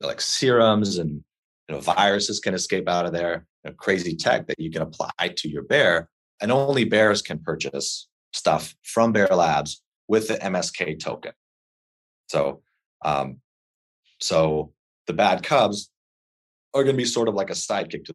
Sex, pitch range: male, 70-100 Hz